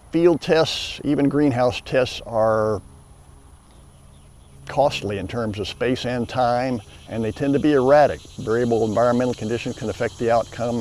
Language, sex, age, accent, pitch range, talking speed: English, male, 50-69, American, 95-130 Hz, 145 wpm